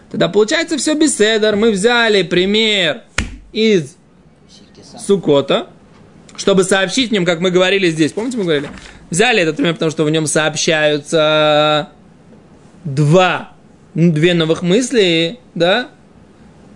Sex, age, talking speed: male, 20-39, 120 wpm